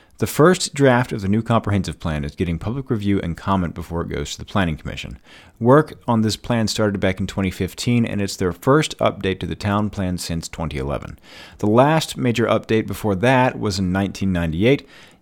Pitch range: 90-120 Hz